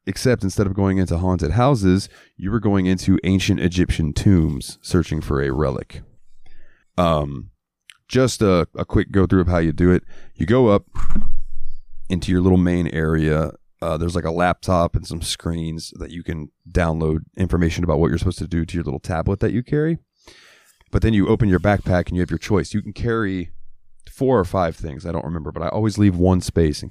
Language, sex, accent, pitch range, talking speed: English, male, American, 80-100 Hz, 205 wpm